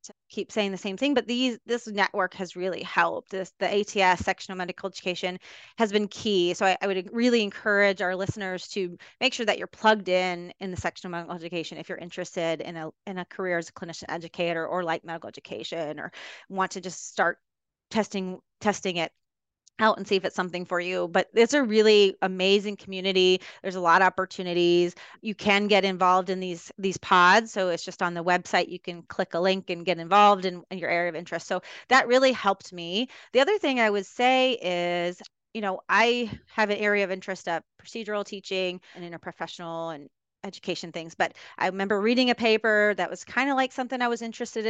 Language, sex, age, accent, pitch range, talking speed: English, female, 30-49, American, 180-215 Hz, 210 wpm